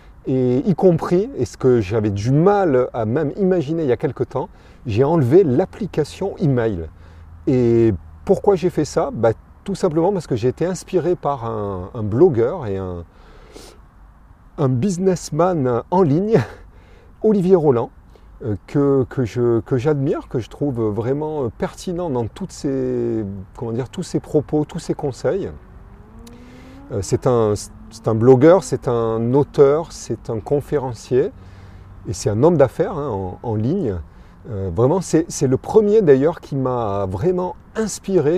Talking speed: 150 wpm